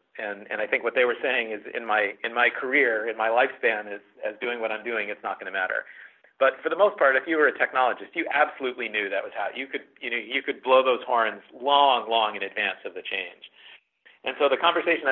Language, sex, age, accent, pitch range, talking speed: English, male, 50-69, American, 120-170 Hz, 255 wpm